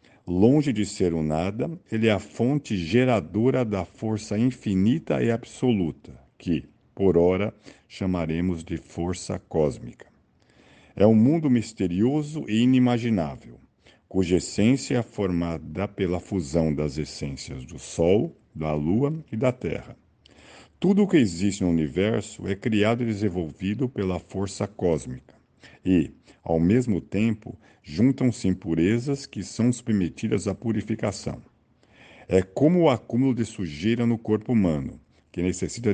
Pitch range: 85-115 Hz